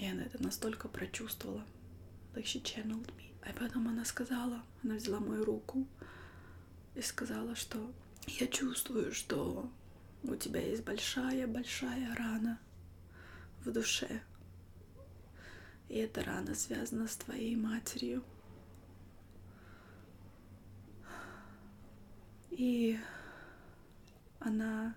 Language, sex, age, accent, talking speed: Russian, female, 20-39, native, 90 wpm